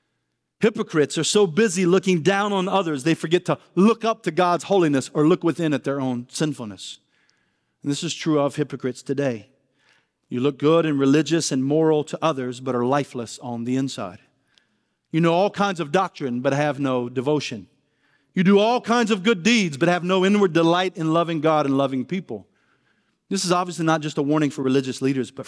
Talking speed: 200 wpm